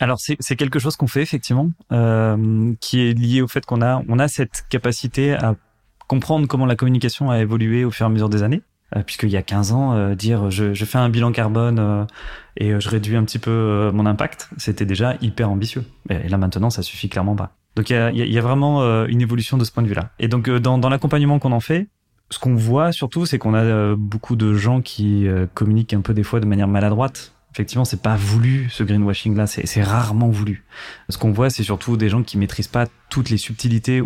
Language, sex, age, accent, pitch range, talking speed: French, male, 20-39, French, 105-125 Hz, 250 wpm